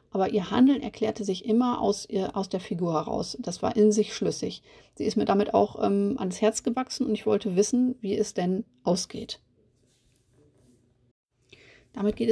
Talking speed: 175 wpm